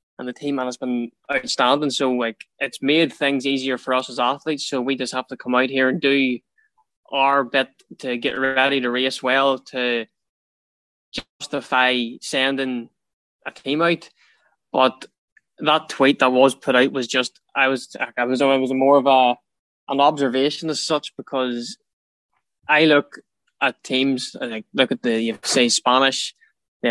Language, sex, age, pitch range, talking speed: English, male, 20-39, 125-140 Hz, 165 wpm